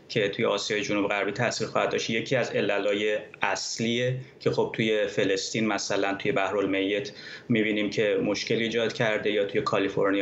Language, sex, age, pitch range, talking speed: Persian, male, 30-49, 110-150 Hz, 165 wpm